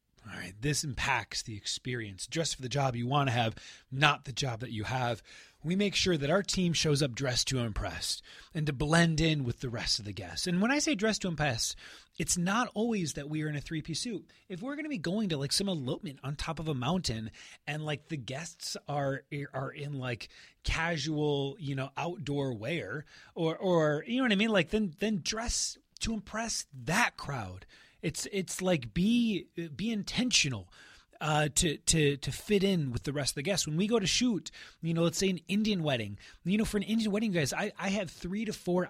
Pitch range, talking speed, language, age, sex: 135-180 Hz, 225 wpm, English, 30-49, male